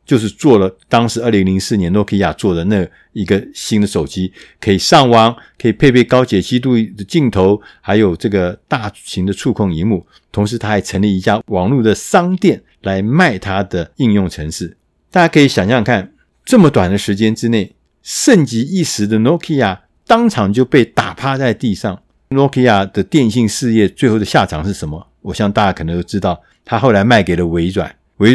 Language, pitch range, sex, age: Chinese, 95-125 Hz, male, 50-69